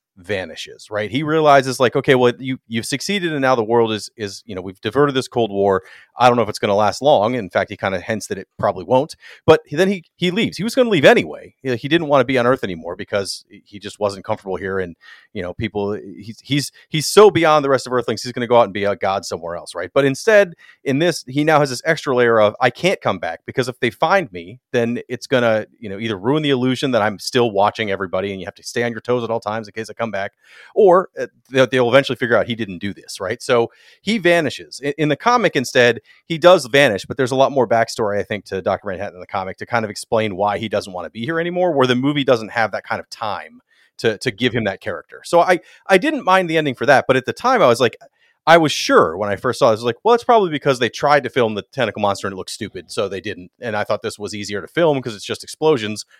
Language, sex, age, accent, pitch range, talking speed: English, male, 30-49, American, 110-150 Hz, 280 wpm